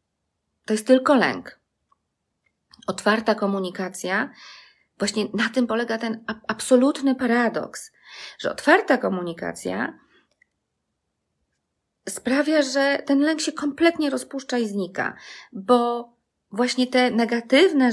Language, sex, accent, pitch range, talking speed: Polish, female, native, 180-245 Hz, 95 wpm